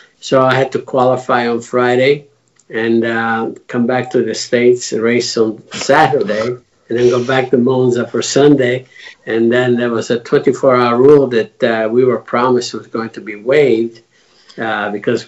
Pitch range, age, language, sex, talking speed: 110-130 Hz, 50-69, English, male, 175 wpm